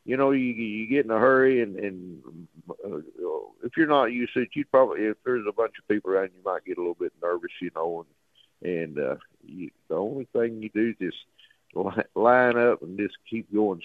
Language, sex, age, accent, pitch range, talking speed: English, male, 60-79, American, 95-145 Hz, 225 wpm